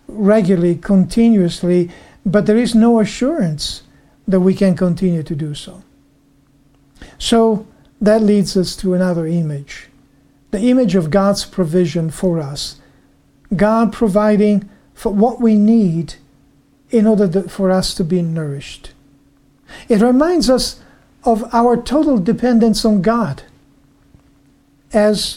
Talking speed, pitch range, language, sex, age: 120 wpm, 140-220 Hz, English, male, 50-69